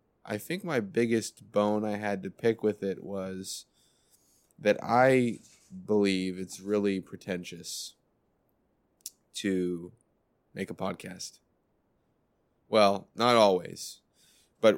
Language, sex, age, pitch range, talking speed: English, male, 20-39, 95-110 Hz, 105 wpm